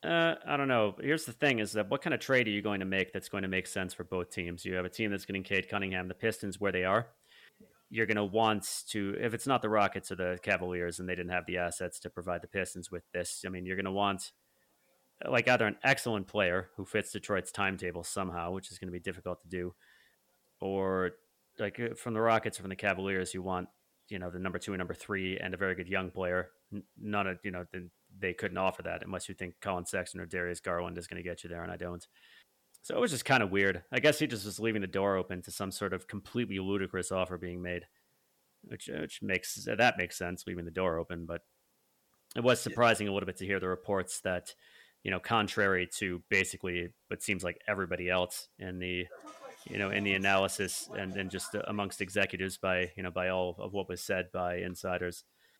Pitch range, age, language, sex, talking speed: 90-100 Hz, 30-49, English, male, 235 wpm